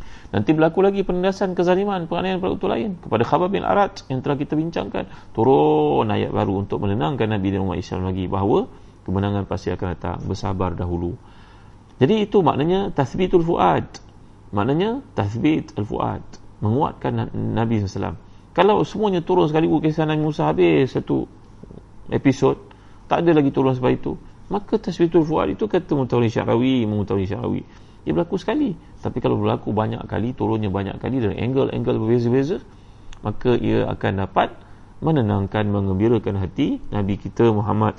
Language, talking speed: Malay, 145 wpm